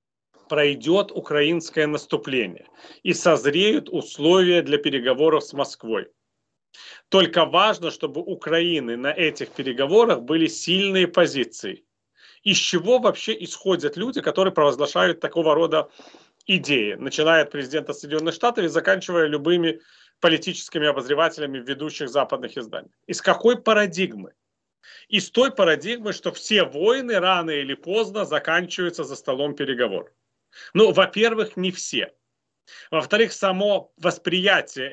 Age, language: 30-49, Russian